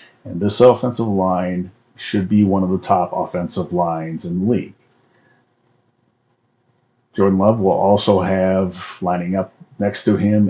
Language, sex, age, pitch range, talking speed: English, male, 40-59, 95-120 Hz, 145 wpm